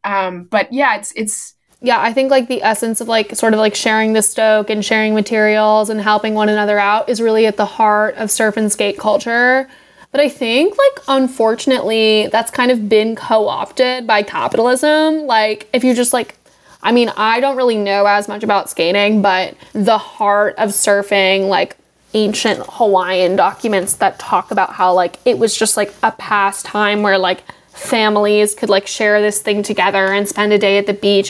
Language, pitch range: English, 205-235 Hz